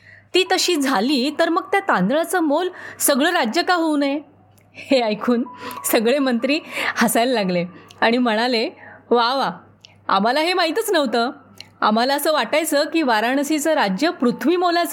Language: Marathi